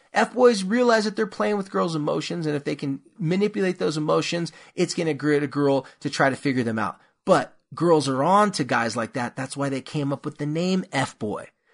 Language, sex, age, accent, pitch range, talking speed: English, male, 30-49, American, 140-205 Hz, 225 wpm